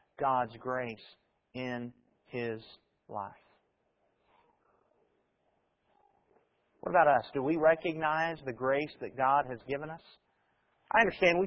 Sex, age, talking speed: male, 40-59, 110 wpm